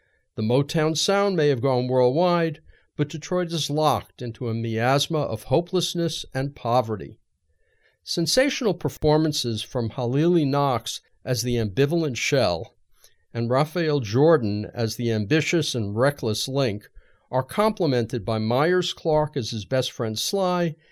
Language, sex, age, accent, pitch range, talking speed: English, male, 50-69, American, 120-170 Hz, 130 wpm